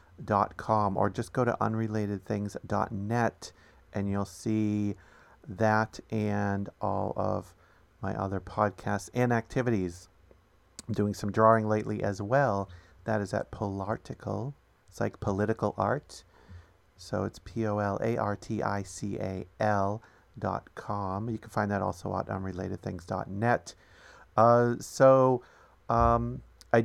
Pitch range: 95-110 Hz